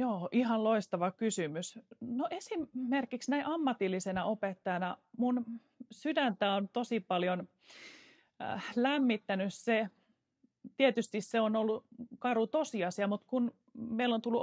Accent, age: native, 30-49